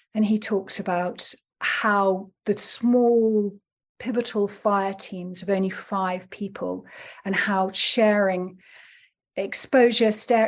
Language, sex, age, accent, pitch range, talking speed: English, female, 40-59, British, 195-235 Hz, 105 wpm